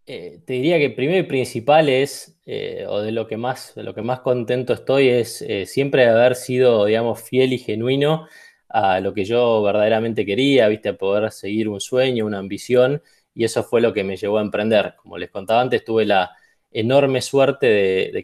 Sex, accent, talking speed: male, Argentinian, 205 wpm